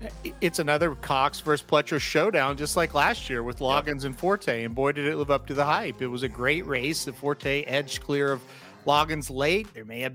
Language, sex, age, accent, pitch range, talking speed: English, male, 40-59, American, 145-190 Hz, 225 wpm